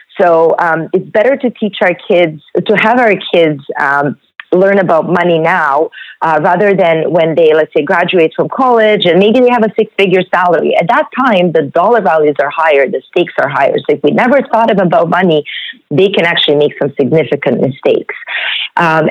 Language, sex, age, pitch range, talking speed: English, female, 40-59, 165-215 Hz, 190 wpm